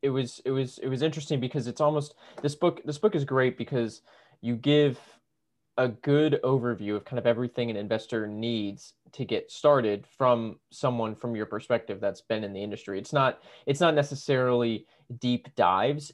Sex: male